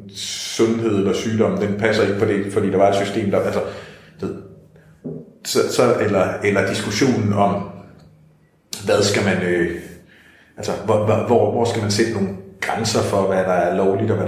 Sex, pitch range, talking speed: male, 105-135 Hz, 180 wpm